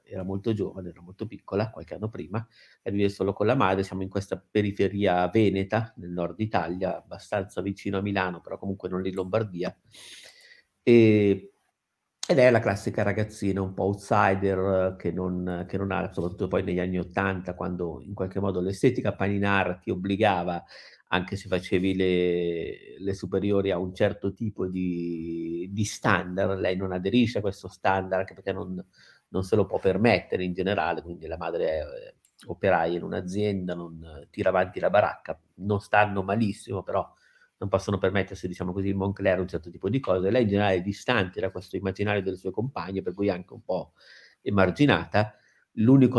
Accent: native